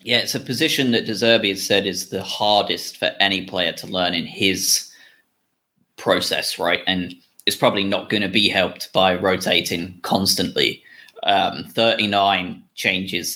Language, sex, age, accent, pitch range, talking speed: English, male, 20-39, British, 95-115 Hz, 155 wpm